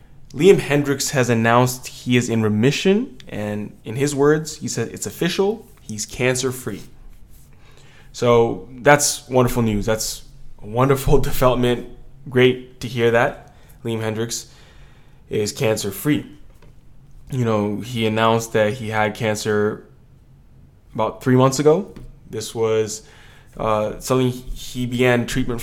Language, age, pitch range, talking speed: English, 20-39, 110-135 Hz, 125 wpm